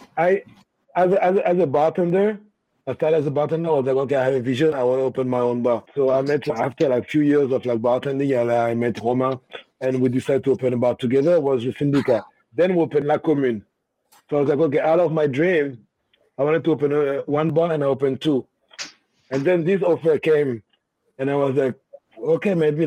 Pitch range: 135-165 Hz